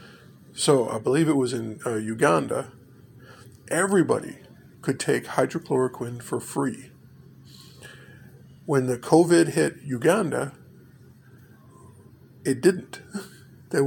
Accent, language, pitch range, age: American, English, 125-145 Hz, 50-69